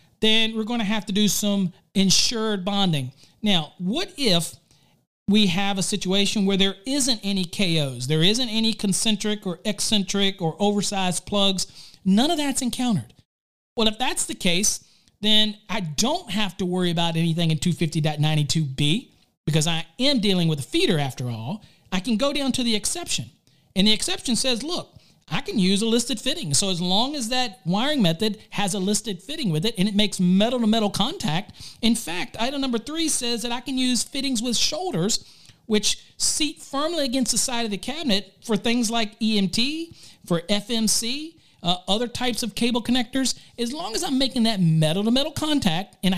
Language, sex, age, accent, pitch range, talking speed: English, male, 40-59, American, 180-240 Hz, 180 wpm